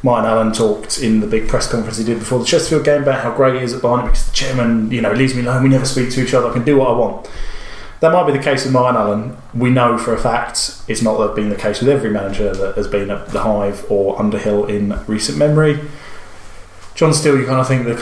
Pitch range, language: 110-125 Hz, English